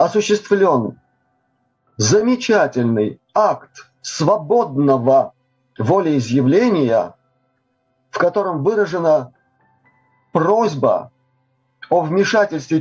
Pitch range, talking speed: 130-200 Hz, 50 wpm